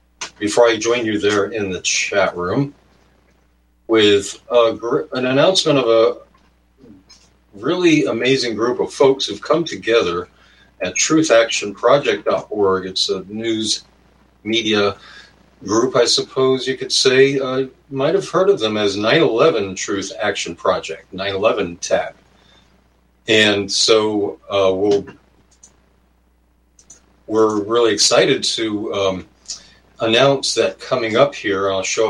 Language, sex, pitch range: English, male, 90-115 Hz